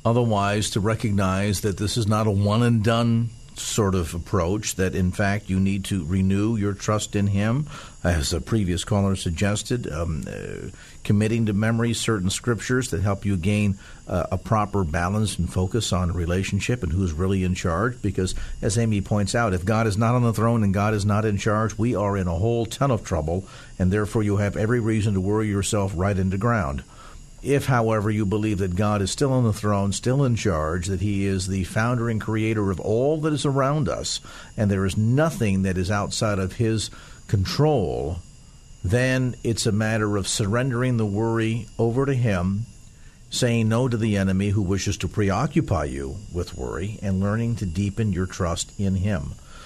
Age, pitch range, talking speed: 50-69, 95-115 Hz, 190 wpm